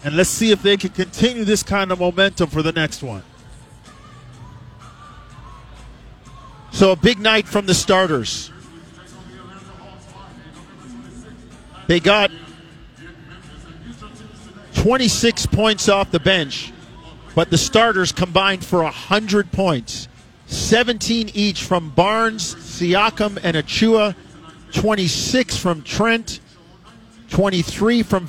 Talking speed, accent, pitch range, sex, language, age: 100 wpm, American, 150-195 Hz, male, English, 40-59